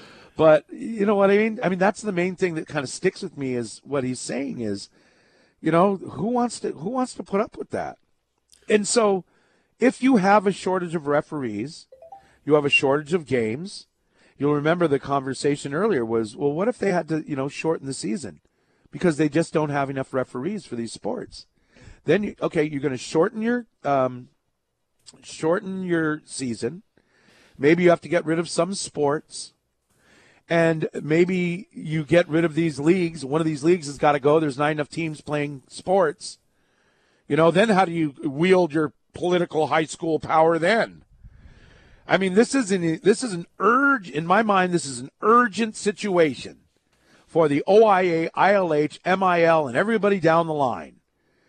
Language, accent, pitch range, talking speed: English, American, 145-195 Hz, 185 wpm